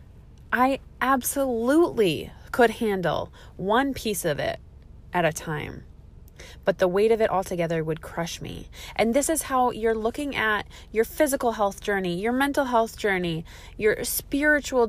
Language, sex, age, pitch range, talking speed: English, female, 20-39, 185-255 Hz, 150 wpm